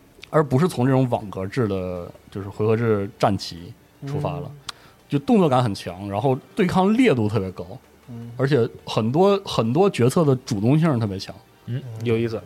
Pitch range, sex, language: 115-155 Hz, male, Chinese